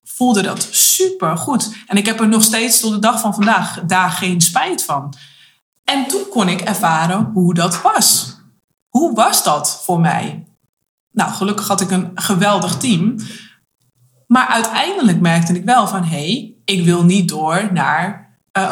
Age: 20-39